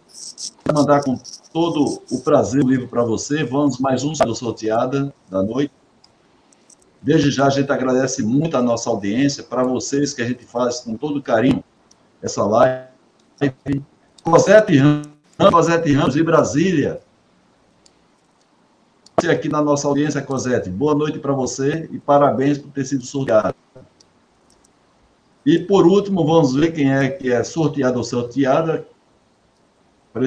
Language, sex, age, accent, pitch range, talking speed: Portuguese, male, 60-79, Brazilian, 130-165 Hz, 140 wpm